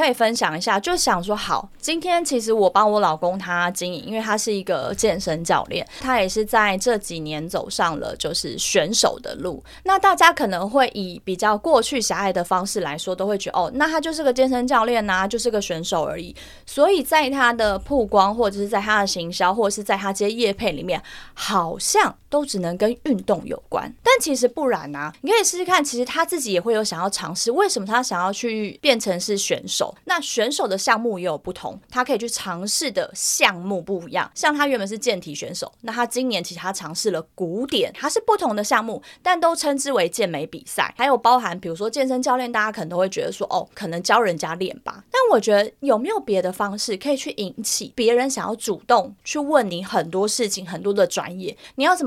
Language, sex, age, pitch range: Chinese, female, 20-39, 190-265 Hz